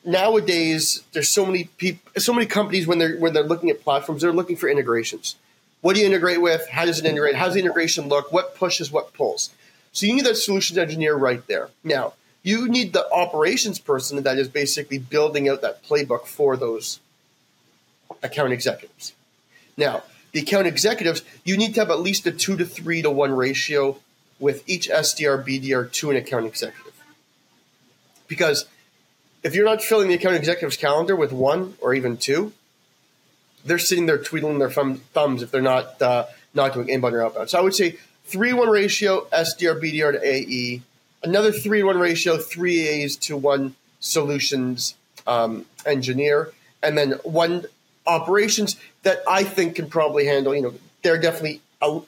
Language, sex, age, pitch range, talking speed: English, male, 30-49, 140-185 Hz, 175 wpm